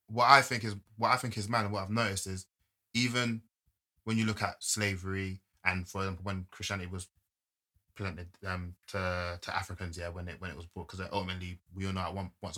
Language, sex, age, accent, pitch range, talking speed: English, male, 20-39, British, 90-105 Hz, 215 wpm